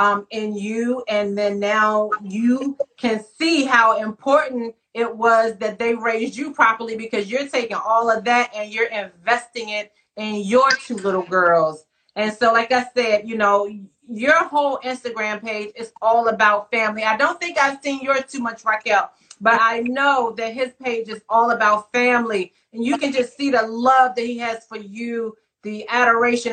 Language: English